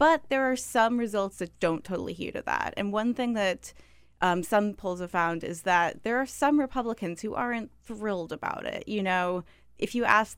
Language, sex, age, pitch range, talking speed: English, female, 20-39, 170-200 Hz, 210 wpm